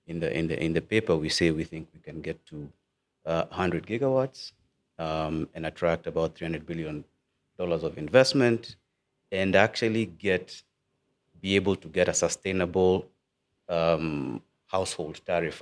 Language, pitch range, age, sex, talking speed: English, 85-110 Hz, 30-49, male, 145 wpm